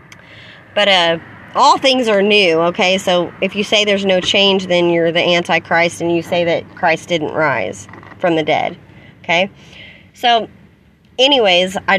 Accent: American